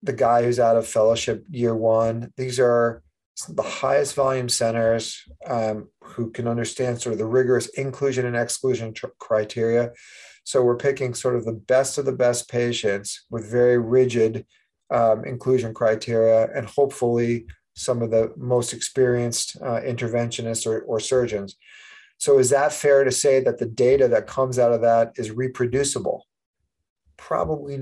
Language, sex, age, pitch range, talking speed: English, male, 40-59, 115-135 Hz, 155 wpm